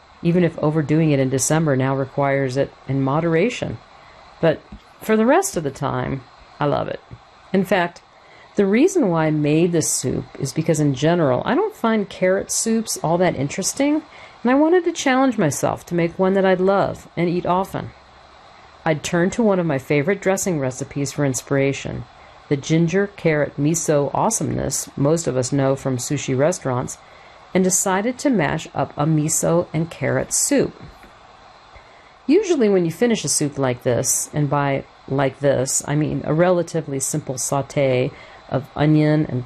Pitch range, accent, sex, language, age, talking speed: 140-190 Hz, American, female, English, 50-69, 165 wpm